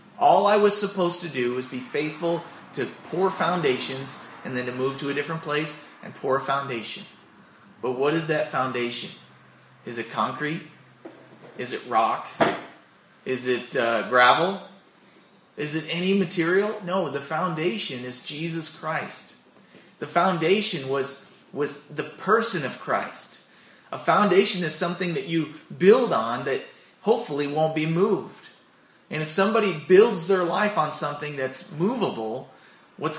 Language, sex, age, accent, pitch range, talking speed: English, male, 30-49, American, 135-180 Hz, 145 wpm